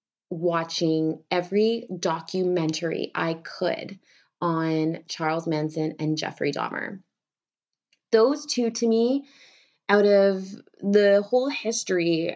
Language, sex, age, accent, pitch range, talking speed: English, female, 20-39, American, 160-210 Hz, 95 wpm